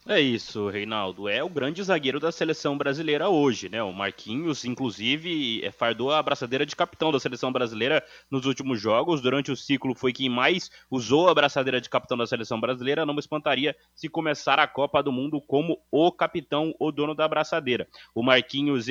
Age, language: 20-39, Portuguese